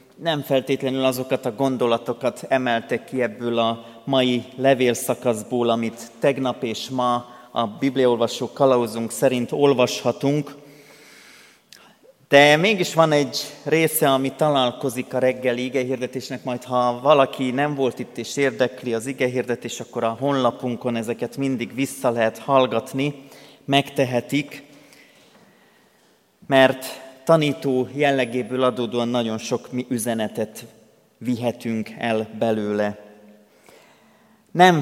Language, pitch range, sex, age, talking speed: Hungarian, 120-140 Hz, male, 30-49, 105 wpm